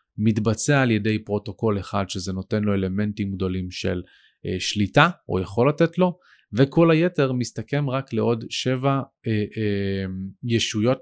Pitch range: 100-135 Hz